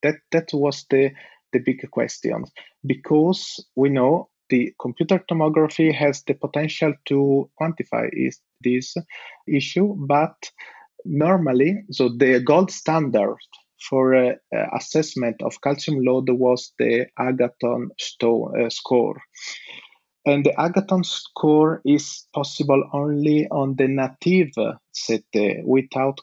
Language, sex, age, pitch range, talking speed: English, male, 30-49, 130-155 Hz, 115 wpm